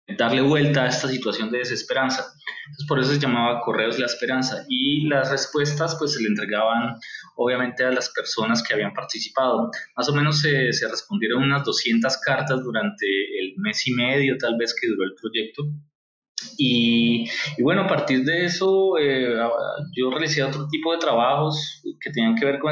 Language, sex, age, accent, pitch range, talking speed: Spanish, male, 20-39, Colombian, 130-150 Hz, 180 wpm